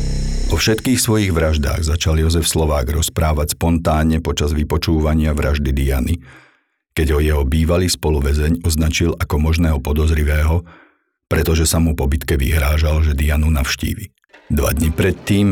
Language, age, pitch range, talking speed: Slovak, 50-69, 75-85 Hz, 130 wpm